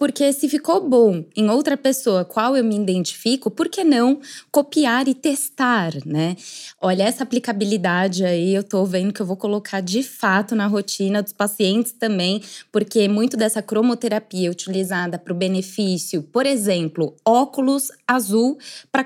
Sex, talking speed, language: female, 155 wpm, Portuguese